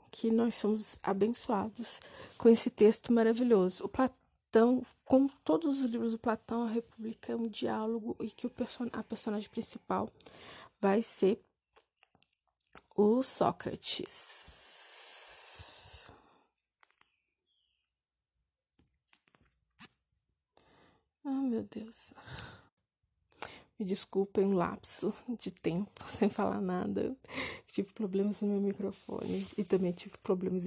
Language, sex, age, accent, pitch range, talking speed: Portuguese, female, 20-39, Brazilian, 190-225 Hz, 105 wpm